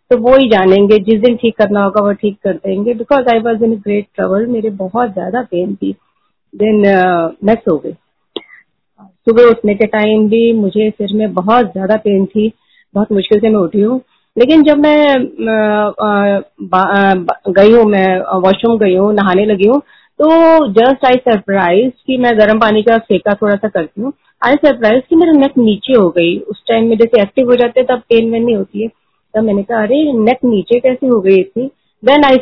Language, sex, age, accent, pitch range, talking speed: Hindi, female, 30-49, native, 205-245 Hz, 200 wpm